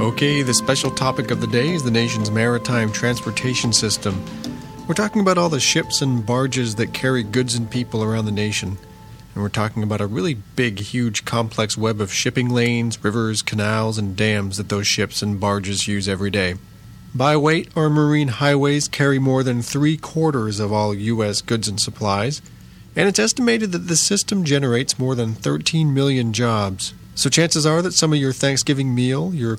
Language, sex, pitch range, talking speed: English, male, 110-150 Hz, 185 wpm